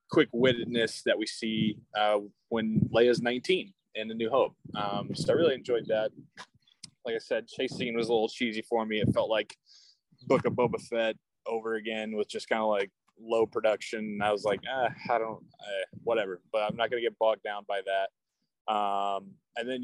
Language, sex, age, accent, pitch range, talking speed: English, male, 20-39, American, 100-125 Hz, 205 wpm